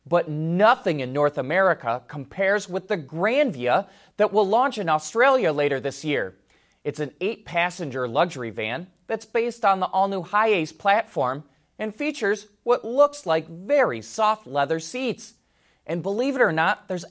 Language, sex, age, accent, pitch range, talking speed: English, male, 20-39, American, 145-215 Hz, 155 wpm